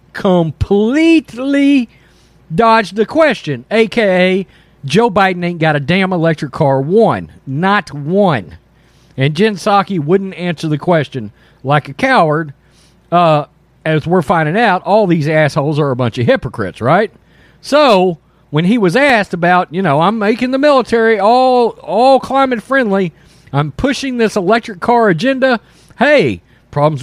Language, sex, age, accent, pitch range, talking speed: English, male, 40-59, American, 150-225 Hz, 140 wpm